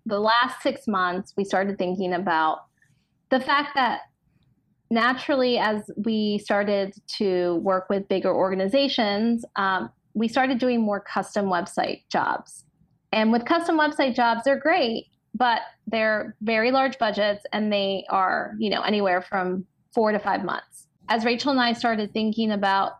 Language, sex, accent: English, female, American